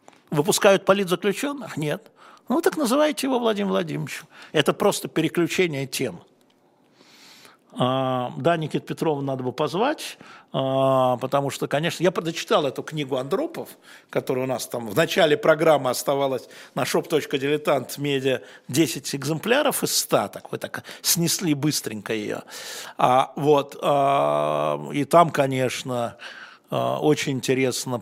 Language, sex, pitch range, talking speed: Russian, male, 125-160 Hz, 125 wpm